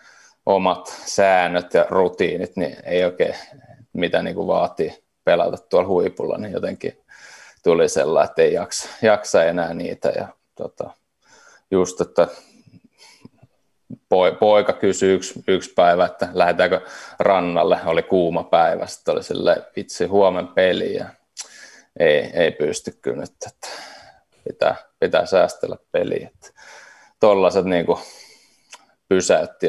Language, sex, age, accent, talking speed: Finnish, male, 30-49, native, 115 wpm